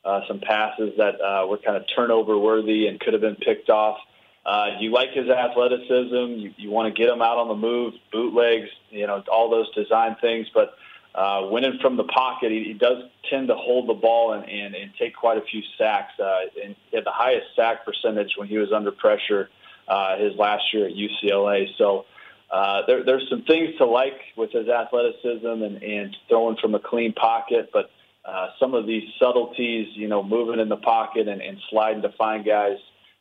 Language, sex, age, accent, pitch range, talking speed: English, male, 30-49, American, 105-120 Hz, 205 wpm